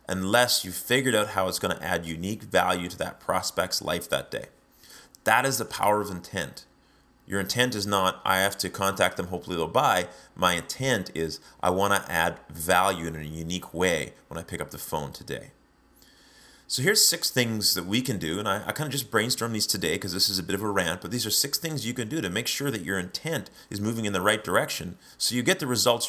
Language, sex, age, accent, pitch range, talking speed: English, male, 30-49, American, 90-120 Hz, 240 wpm